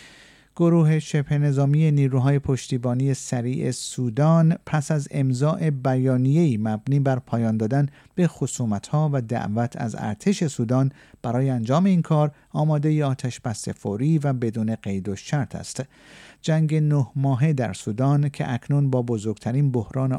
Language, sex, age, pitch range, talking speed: Persian, male, 50-69, 110-145 Hz, 135 wpm